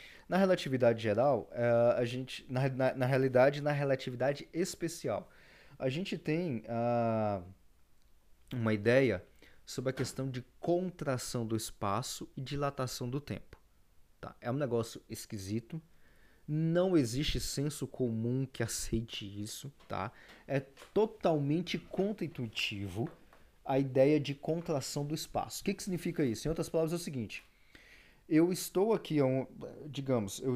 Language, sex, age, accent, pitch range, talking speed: Portuguese, male, 20-39, Brazilian, 120-170 Hz, 135 wpm